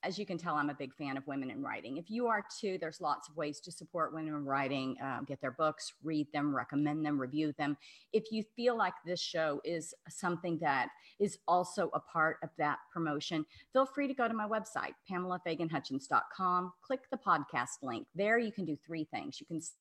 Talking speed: 215 wpm